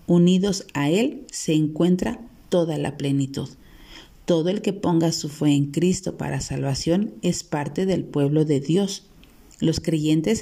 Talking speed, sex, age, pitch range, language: 150 wpm, female, 40-59, 160-195 Hz, Spanish